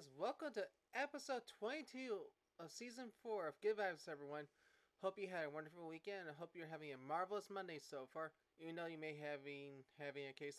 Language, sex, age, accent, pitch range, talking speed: English, male, 20-39, American, 155-200 Hz, 200 wpm